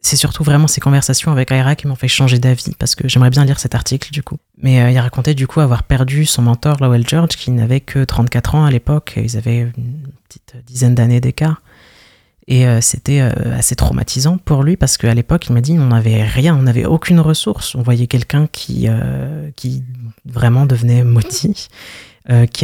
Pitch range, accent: 120-140 Hz, French